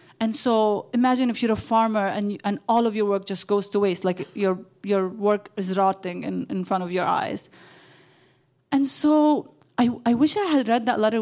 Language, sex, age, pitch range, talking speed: English, female, 30-49, 210-265 Hz, 210 wpm